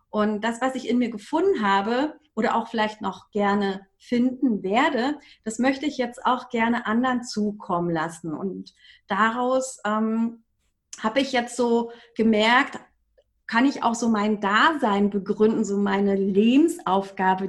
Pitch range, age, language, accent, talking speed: 205-250 Hz, 30-49, German, German, 145 wpm